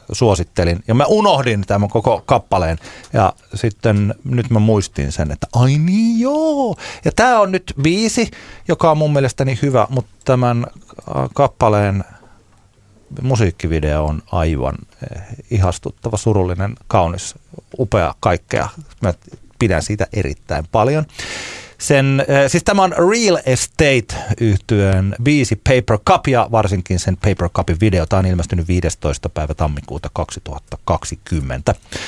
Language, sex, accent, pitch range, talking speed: Finnish, male, native, 95-125 Hz, 120 wpm